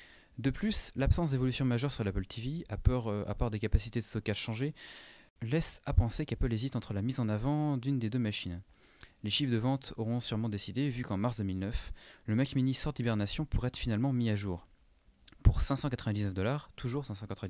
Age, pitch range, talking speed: 30-49, 105-135 Hz, 195 wpm